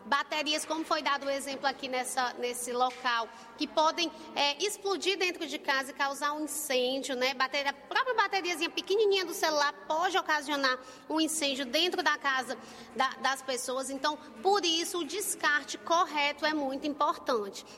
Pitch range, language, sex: 260-315 Hz, Portuguese, female